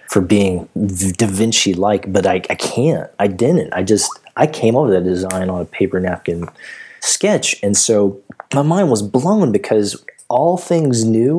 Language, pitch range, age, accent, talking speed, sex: English, 85-110 Hz, 20-39, American, 175 wpm, male